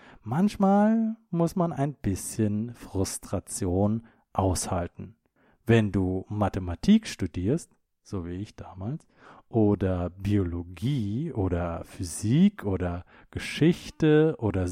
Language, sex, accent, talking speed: English, male, German, 90 wpm